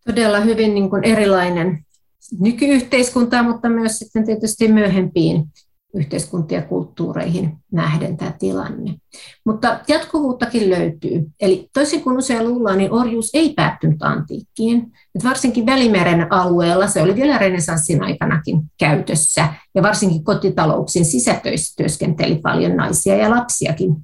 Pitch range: 170-230 Hz